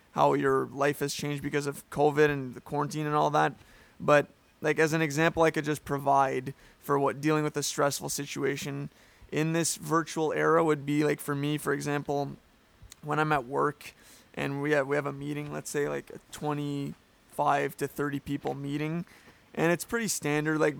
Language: English